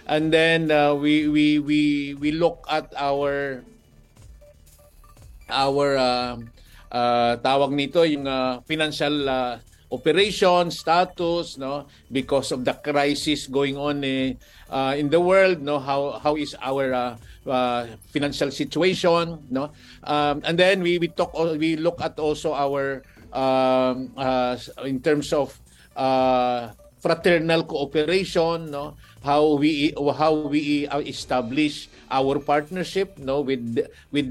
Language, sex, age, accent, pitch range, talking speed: Filipino, male, 50-69, native, 135-165 Hz, 130 wpm